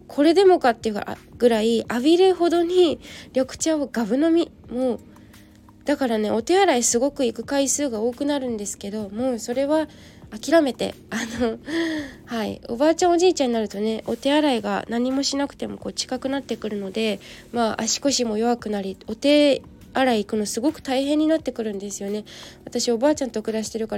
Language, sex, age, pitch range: Japanese, female, 20-39, 220-295 Hz